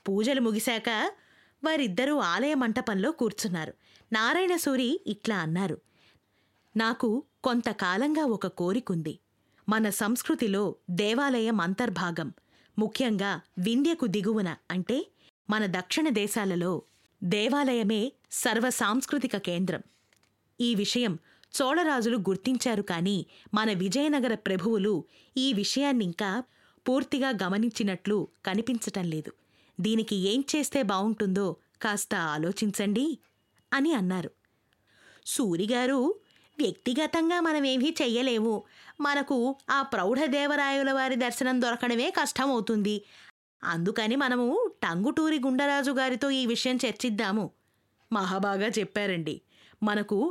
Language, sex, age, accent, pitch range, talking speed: Telugu, female, 20-39, native, 200-260 Hz, 80 wpm